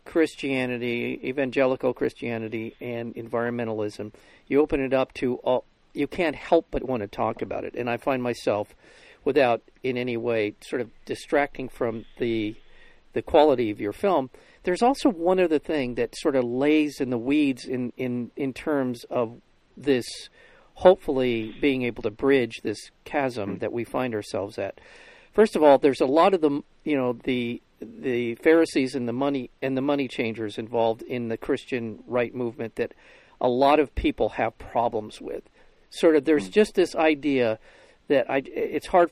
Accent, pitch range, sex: American, 120-150 Hz, male